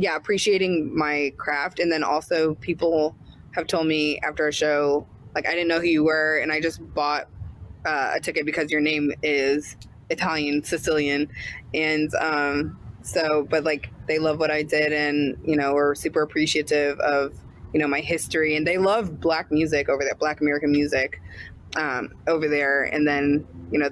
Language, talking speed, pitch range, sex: English, 180 wpm, 140-155 Hz, female